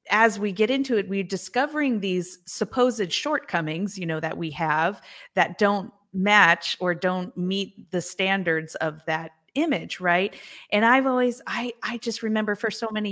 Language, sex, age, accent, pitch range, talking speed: English, female, 30-49, American, 175-240 Hz, 170 wpm